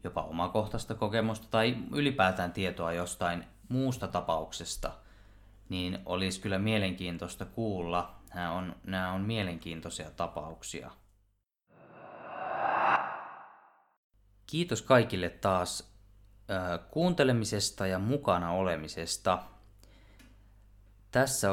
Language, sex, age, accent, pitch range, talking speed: Finnish, male, 20-39, native, 90-105 Hz, 75 wpm